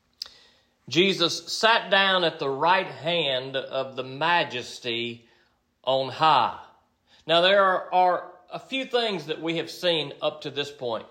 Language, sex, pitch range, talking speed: English, male, 150-195 Hz, 145 wpm